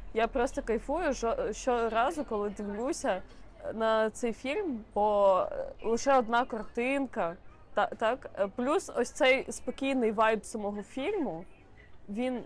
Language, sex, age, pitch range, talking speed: Ukrainian, female, 20-39, 215-285 Hz, 105 wpm